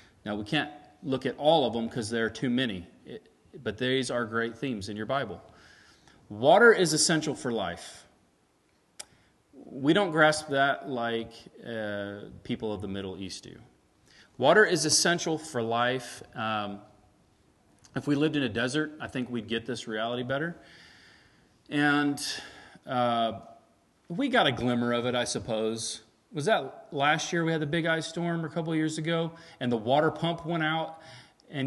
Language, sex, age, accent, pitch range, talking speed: English, male, 40-59, American, 115-155 Hz, 165 wpm